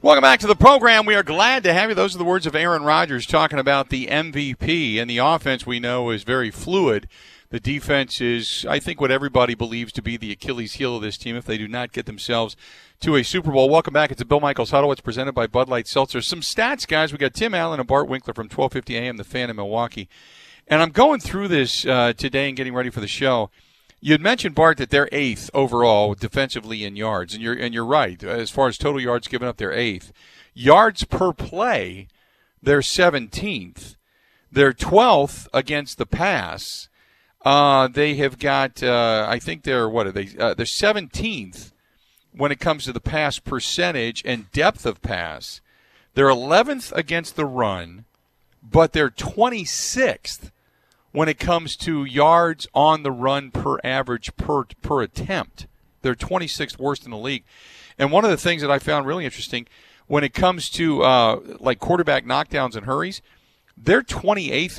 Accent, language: American, English